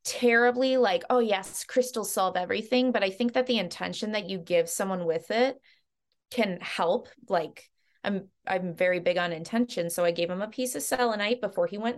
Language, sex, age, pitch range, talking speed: English, female, 20-39, 190-245 Hz, 195 wpm